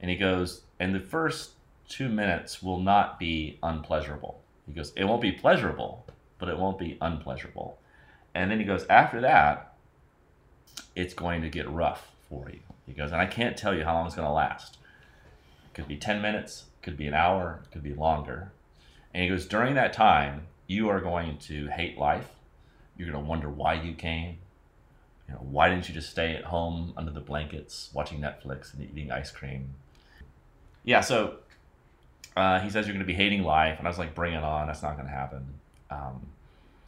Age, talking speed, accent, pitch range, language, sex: 30-49, 200 wpm, American, 70-90 Hz, English, male